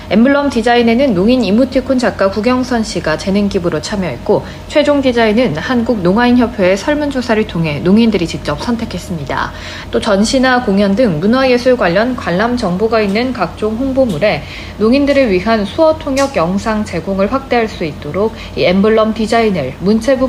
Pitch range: 185-255 Hz